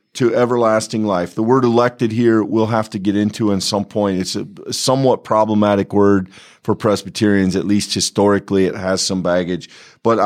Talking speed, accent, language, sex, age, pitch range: 175 wpm, American, English, male, 40-59, 95-120 Hz